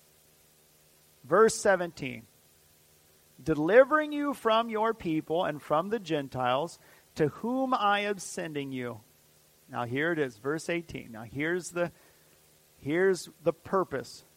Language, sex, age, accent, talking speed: English, male, 40-59, American, 115 wpm